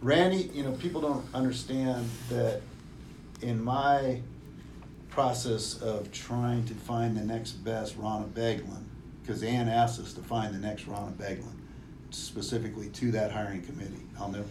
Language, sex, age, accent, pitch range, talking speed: English, male, 50-69, American, 105-120 Hz, 150 wpm